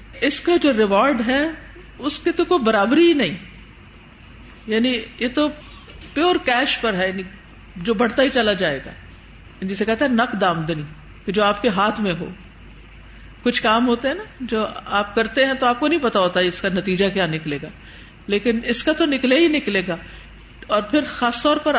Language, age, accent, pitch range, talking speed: English, 50-69, Indian, 205-285 Hz, 165 wpm